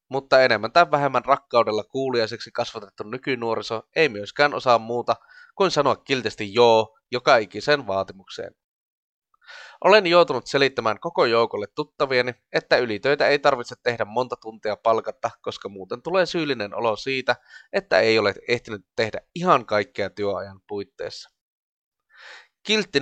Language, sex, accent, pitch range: Finnish, male, native, 110-145 Hz